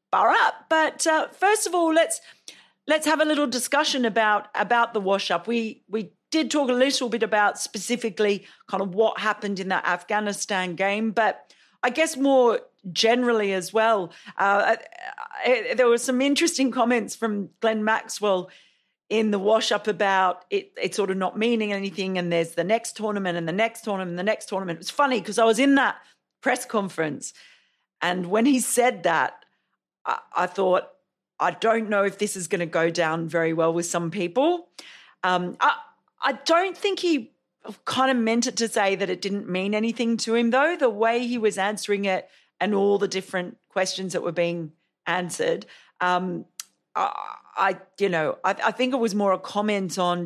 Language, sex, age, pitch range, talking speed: English, female, 40-59, 185-250 Hz, 185 wpm